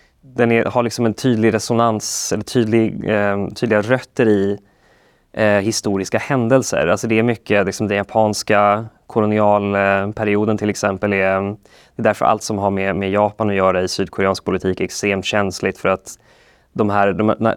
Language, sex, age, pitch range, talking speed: Swedish, male, 20-39, 95-115 Hz, 175 wpm